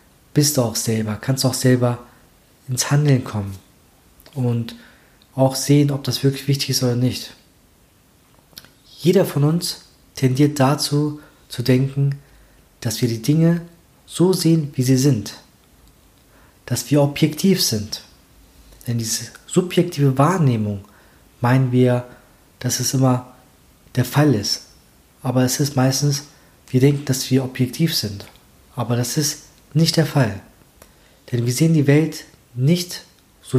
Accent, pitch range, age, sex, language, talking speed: German, 120-145 Hz, 40-59, male, German, 135 wpm